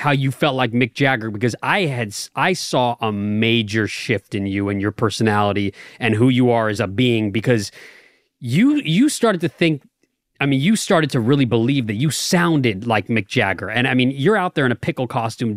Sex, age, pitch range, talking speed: male, 30-49, 115-160 Hz, 210 wpm